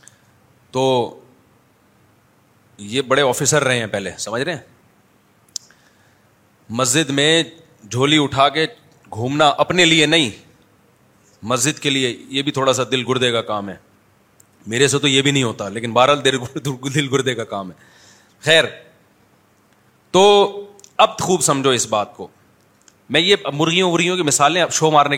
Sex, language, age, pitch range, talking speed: male, Urdu, 30-49, 130-185 Hz, 150 wpm